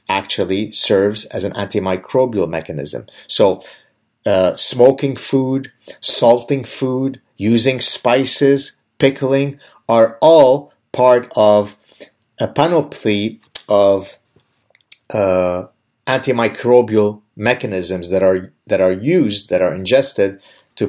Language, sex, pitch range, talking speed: English, male, 105-130 Hz, 100 wpm